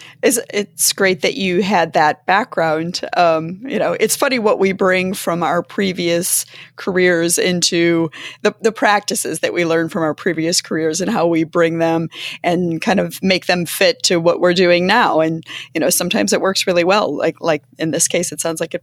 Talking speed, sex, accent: 200 wpm, female, American